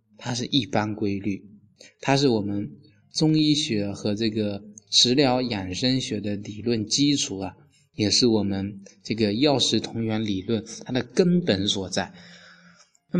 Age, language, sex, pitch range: 20-39, Chinese, male, 100-135 Hz